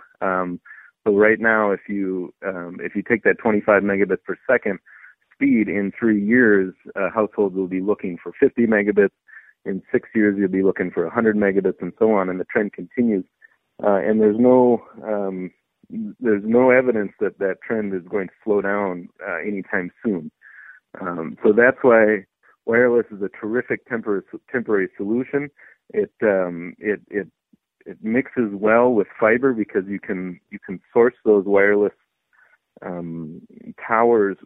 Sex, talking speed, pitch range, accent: male, 160 wpm, 95-115 Hz, American